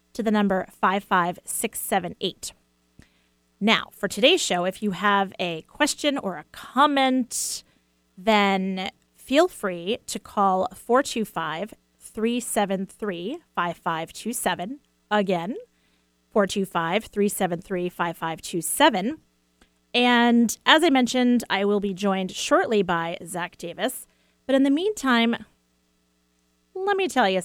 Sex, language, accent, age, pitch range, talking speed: female, English, American, 30-49, 170-225 Hz, 95 wpm